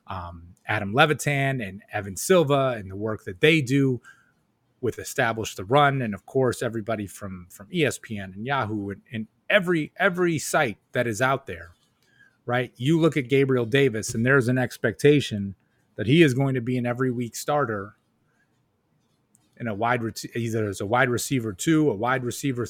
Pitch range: 110-135 Hz